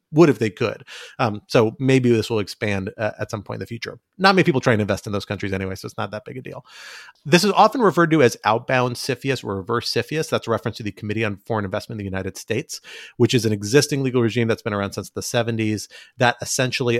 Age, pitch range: 30-49, 100-120 Hz